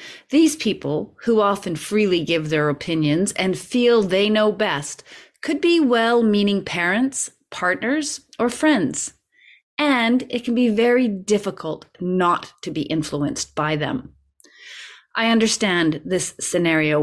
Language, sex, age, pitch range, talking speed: English, female, 30-49, 160-245 Hz, 125 wpm